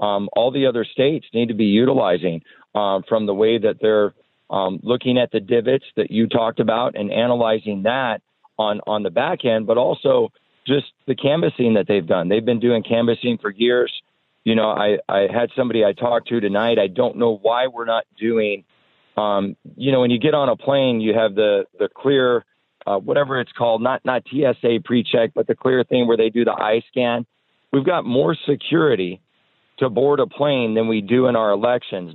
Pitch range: 110-130 Hz